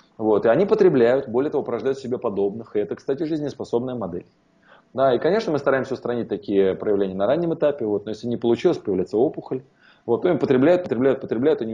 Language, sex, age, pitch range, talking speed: Russian, male, 20-39, 105-160 Hz, 205 wpm